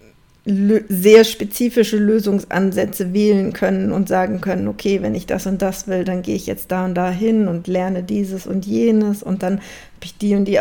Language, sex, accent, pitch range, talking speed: German, female, German, 200-235 Hz, 200 wpm